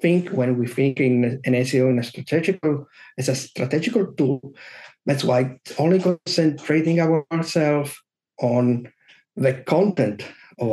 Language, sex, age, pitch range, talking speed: English, male, 50-69, 125-165 Hz, 140 wpm